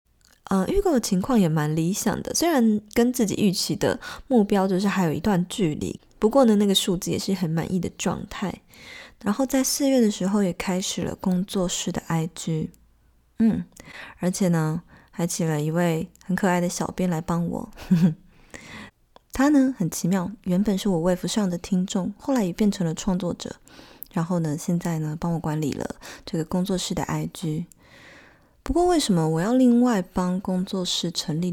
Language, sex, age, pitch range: Chinese, female, 20-39, 170-205 Hz